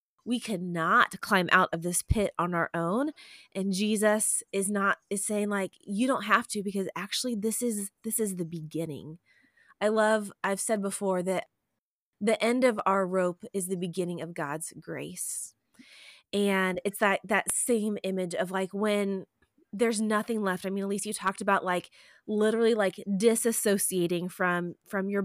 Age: 20-39